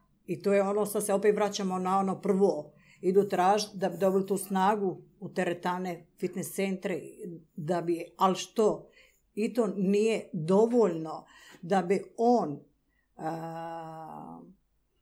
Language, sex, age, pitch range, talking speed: Croatian, female, 50-69, 175-210 Hz, 135 wpm